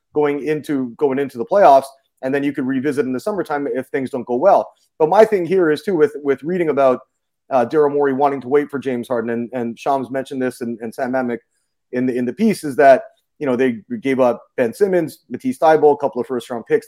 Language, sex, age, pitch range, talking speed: English, male, 30-49, 130-180 Hz, 245 wpm